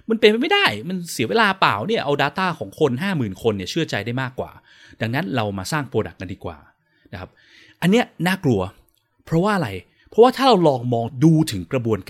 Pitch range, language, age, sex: 110-160 Hz, Thai, 20-39, male